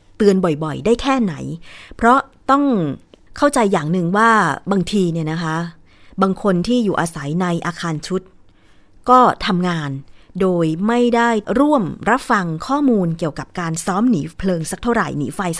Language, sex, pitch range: Thai, female, 165-220 Hz